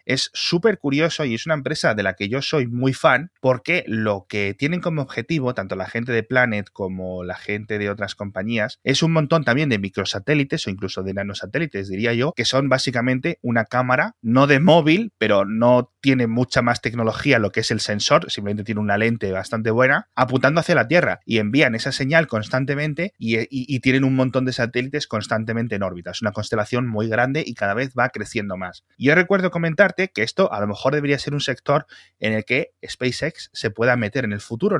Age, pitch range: 30-49, 110-145 Hz